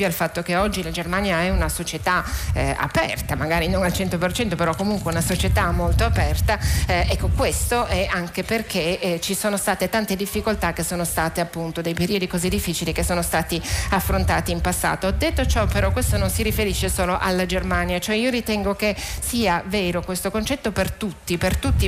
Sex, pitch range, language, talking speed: female, 170-205 Hz, Italian, 190 wpm